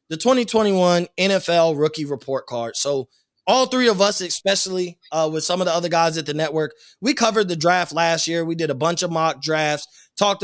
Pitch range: 155-185 Hz